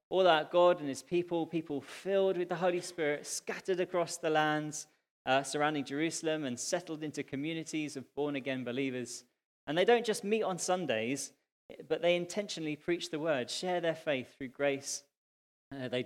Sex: male